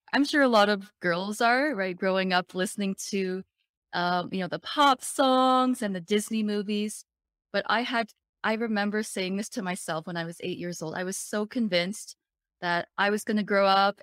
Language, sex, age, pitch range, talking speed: English, female, 20-39, 175-215 Hz, 205 wpm